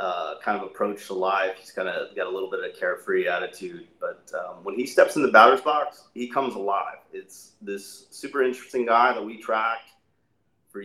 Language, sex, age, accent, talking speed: English, male, 30-49, American, 210 wpm